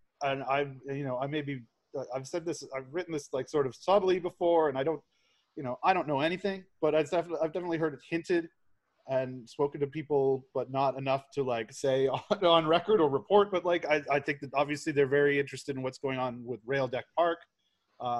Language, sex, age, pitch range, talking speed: English, male, 20-39, 130-155 Hz, 220 wpm